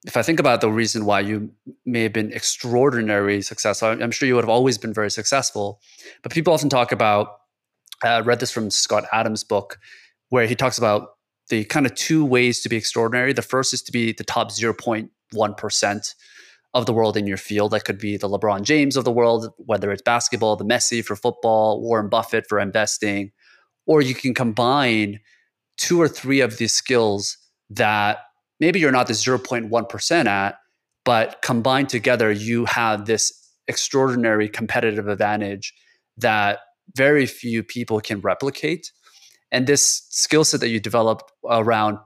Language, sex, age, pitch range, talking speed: English, male, 30-49, 105-125 Hz, 170 wpm